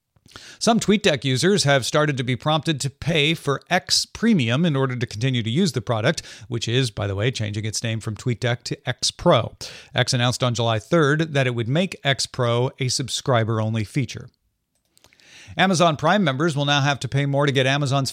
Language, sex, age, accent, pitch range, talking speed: English, male, 40-59, American, 125-165 Hz, 200 wpm